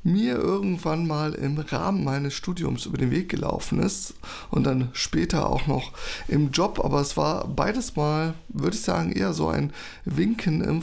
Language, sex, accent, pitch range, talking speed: German, male, German, 145-185 Hz, 175 wpm